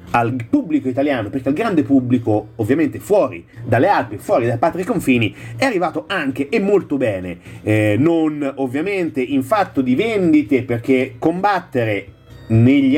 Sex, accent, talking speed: male, native, 145 wpm